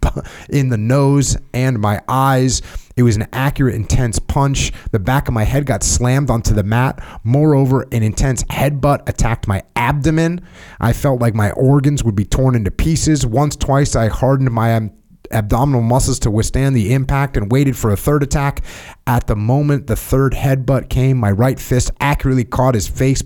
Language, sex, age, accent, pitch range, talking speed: English, male, 30-49, American, 105-135 Hz, 185 wpm